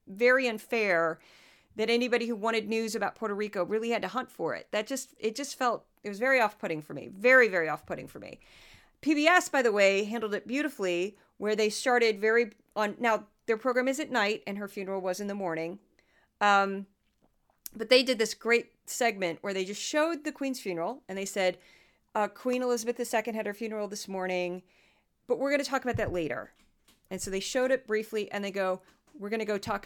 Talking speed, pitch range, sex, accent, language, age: 210 wpm, 190-245 Hz, female, American, English, 40-59